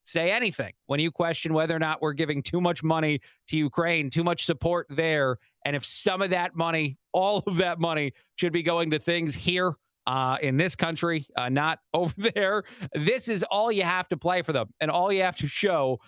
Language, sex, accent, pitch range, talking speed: English, male, American, 150-180 Hz, 215 wpm